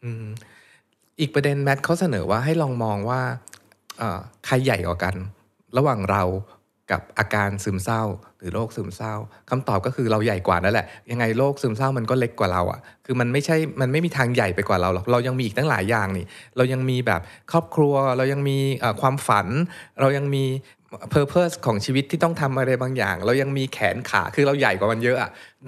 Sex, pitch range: male, 105-135 Hz